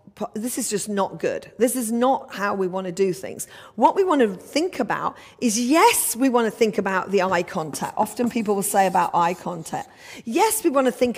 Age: 40-59